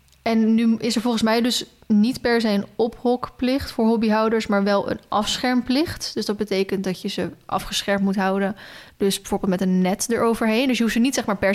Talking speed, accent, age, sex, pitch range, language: 205 wpm, Dutch, 20-39, female, 200-235 Hz, Dutch